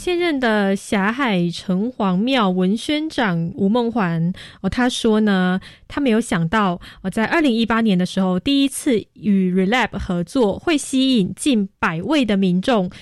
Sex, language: female, Chinese